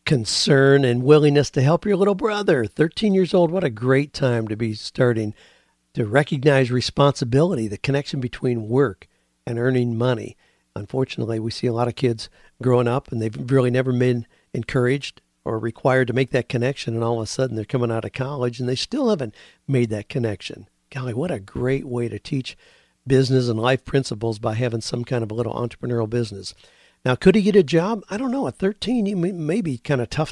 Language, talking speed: English, 205 wpm